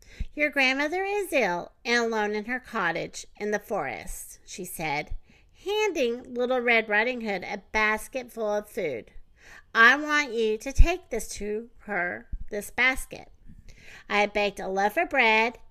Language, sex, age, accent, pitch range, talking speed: English, female, 50-69, American, 215-320 Hz, 155 wpm